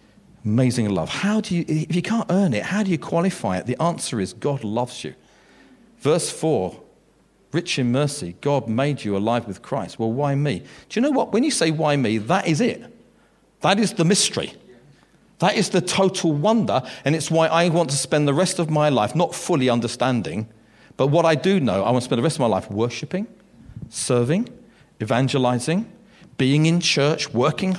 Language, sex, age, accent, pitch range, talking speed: English, male, 40-59, British, 125-175 Hz, 200 wpm